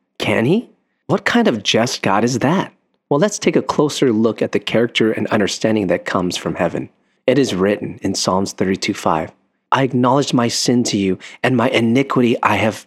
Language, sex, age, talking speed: English, male, 30-49, 195 wpm